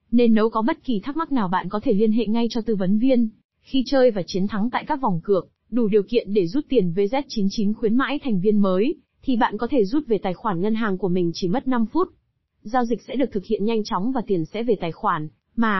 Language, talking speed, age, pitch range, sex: Vietnamese, 265 wpm, 20-39, 200-255 Hz, female